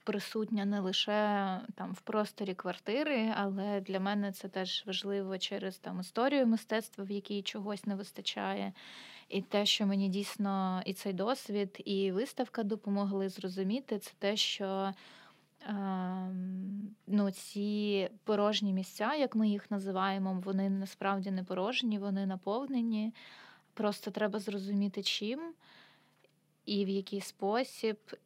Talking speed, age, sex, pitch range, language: 125 wpm, 20-39, female, 195-210 Hz, Ukrainian